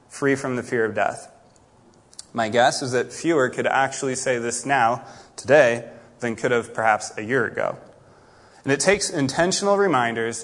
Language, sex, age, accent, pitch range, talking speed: English, male, 20-39, American, 120-155 Hz, 165 wpm